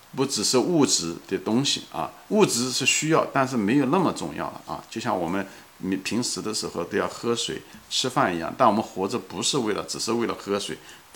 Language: Chinese